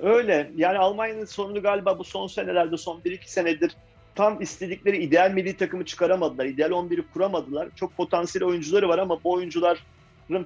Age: 40-59